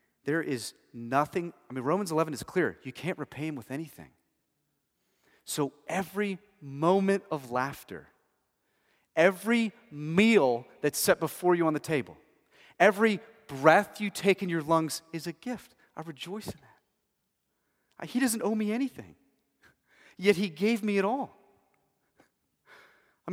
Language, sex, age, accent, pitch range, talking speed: English, male, 30-49, American, 135-195 Hz, 140 wpm